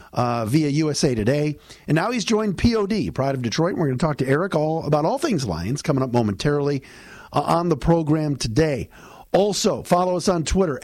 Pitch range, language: 130-185 Hz, English